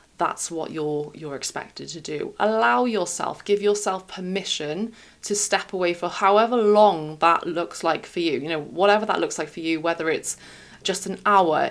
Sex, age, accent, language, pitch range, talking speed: female, 20-39, British, English, 155-185 Hz, 185 wpm